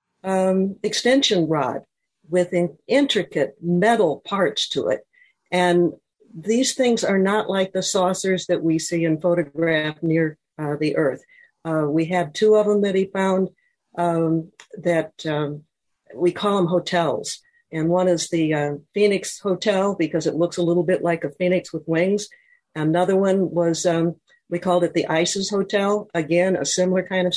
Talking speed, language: 165 wpm, English